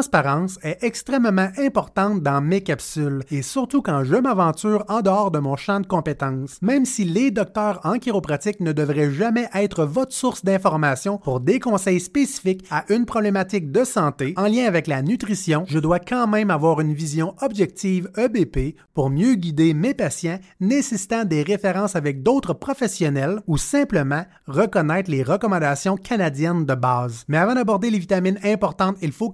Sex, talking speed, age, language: male, 165 wpm, 30-49, French